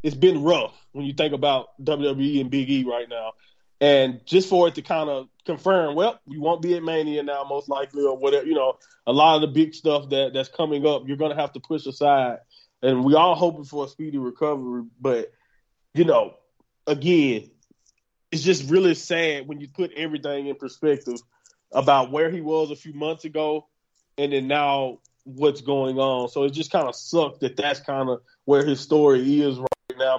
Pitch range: 140-170 Hz